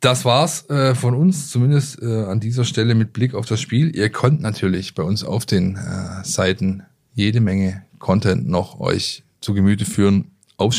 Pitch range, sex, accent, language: 95-110 Hz, male, German, German